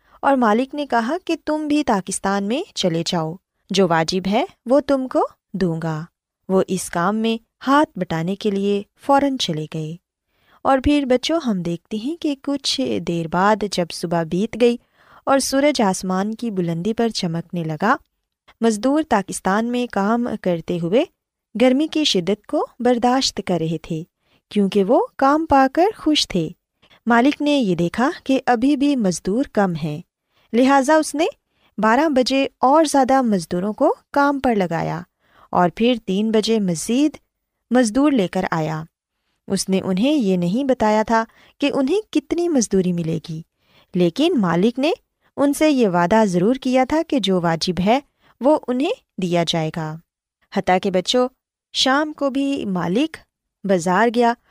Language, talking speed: Urdu, 160 wpm